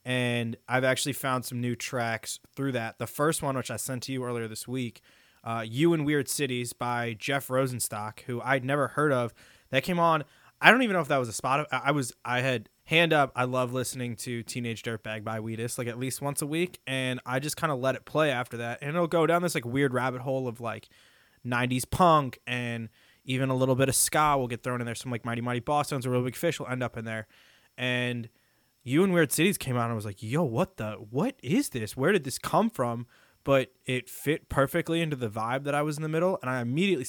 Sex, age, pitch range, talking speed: male, 20-39, 120-140 Hz, 250 wpm